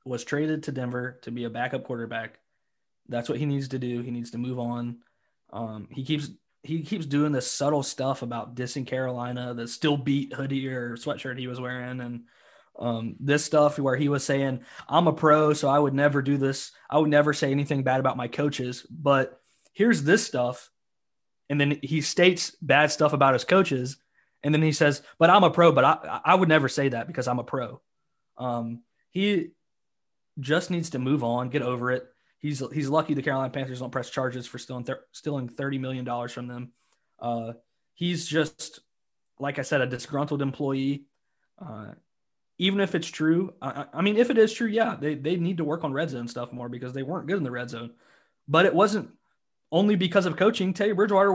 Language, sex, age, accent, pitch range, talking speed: English, male, 20-39, American, 125-165 Hz, 200 wpm